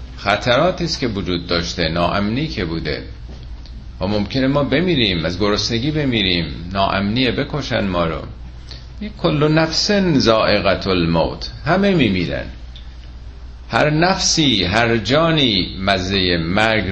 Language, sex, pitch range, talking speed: Persian, male, 80-130 Hz, 110 wpm